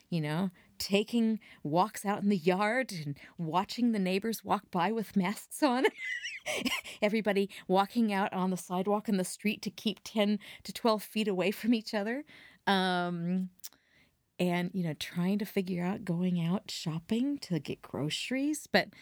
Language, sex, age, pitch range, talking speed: English, female, 40-59, 165-230 Hz, 160 wpm